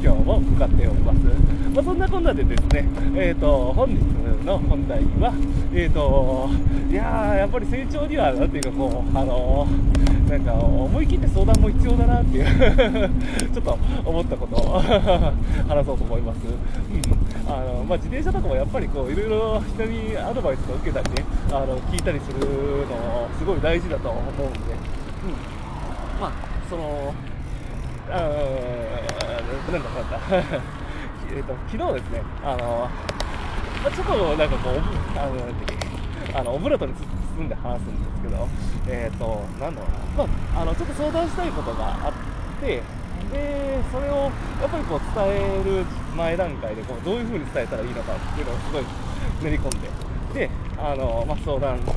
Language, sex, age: Japanese, male, 20-39